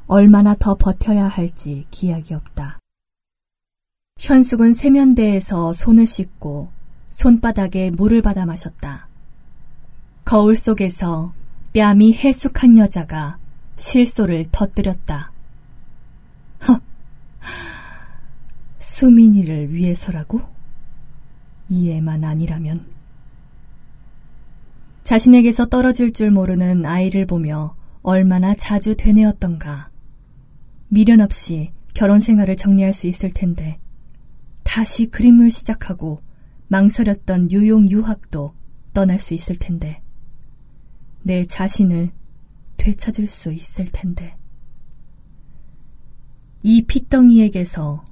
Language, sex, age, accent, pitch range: Korean, female, 20-39, native, 155-210 Hz